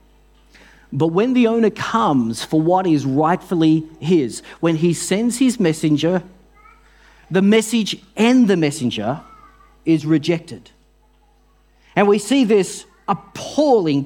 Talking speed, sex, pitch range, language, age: 115 wpm, male, 145-210 Hz, English, 40-59